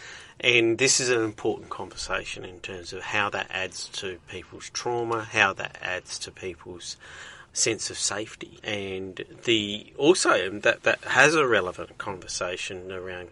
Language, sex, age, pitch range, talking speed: English, male, 40-59, 95-115 Hz, 150 wpm